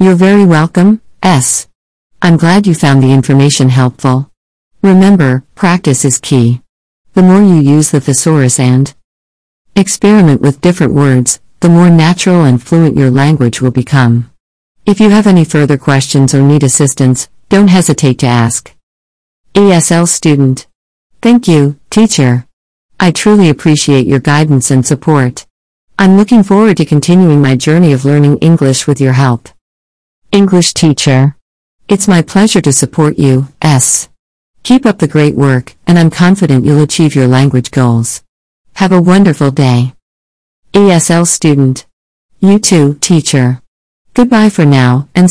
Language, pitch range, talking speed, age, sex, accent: English, 130-175 Hz, 145 wpm, 50-69, female, American